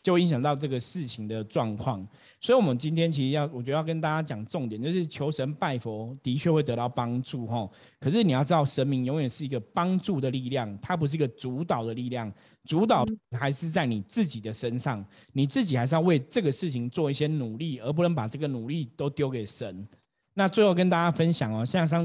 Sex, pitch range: male, 120-160 Hz